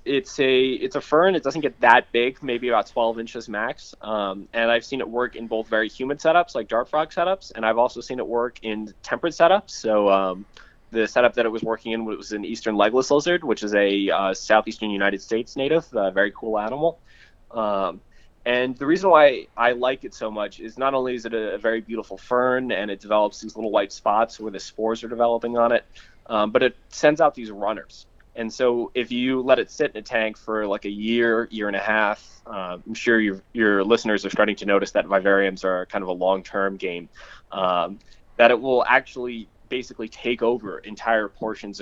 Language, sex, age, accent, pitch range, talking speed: English, male, 20-39, American, 100-120 Hz, 215 wpm